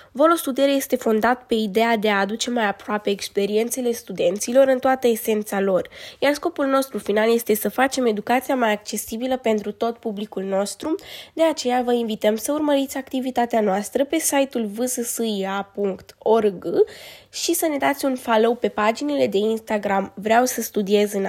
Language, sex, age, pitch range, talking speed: Romanian, female, 20-39, 215-265 Hz, 155 wpm